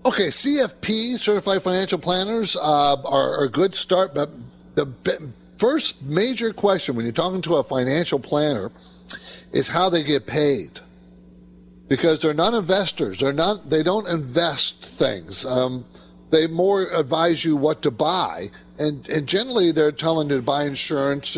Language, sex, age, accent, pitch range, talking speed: English, male, 50-69, American, 130-190 Hz, 160 wpm